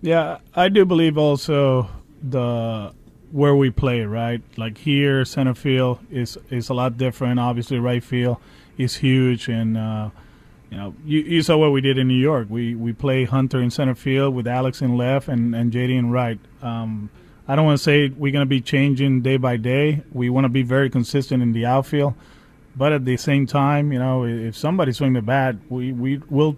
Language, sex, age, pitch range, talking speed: English, male, 30-49, 125-140 Hz, 195 wpm